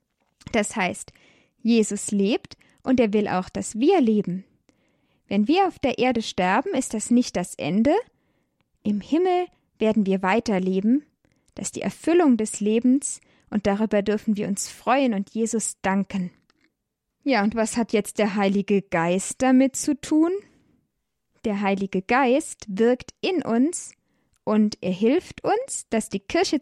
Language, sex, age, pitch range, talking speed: German, female, 10-29, 205-265 Hz, 150 wpm